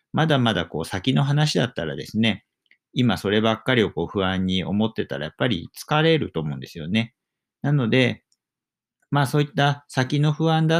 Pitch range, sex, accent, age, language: 85-140 Hz, male, native, 50-69, Japanese